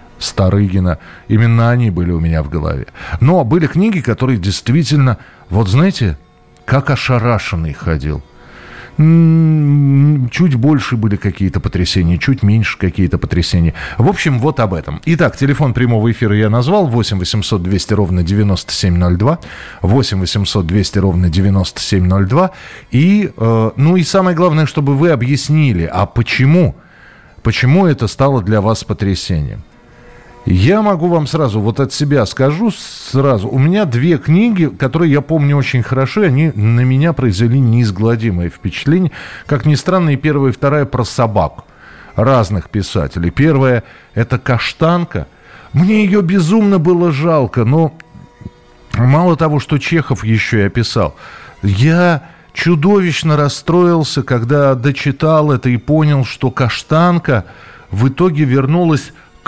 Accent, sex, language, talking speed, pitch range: native, male, Russian, 130 wpm, 105-155 Hz